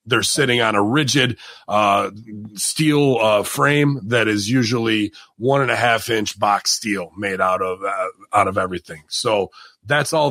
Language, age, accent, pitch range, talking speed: English, 30-49, American, 120-165 Hz, 170 wpm